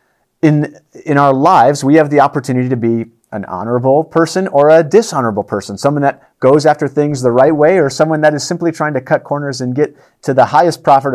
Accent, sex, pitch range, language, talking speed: American, male, 125-155 Hz, English, 215 wpm